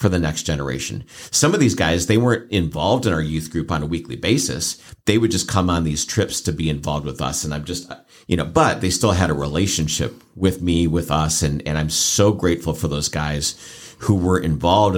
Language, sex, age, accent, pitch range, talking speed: English, male, 50-69, American, 80-105 Hz, 230 wpm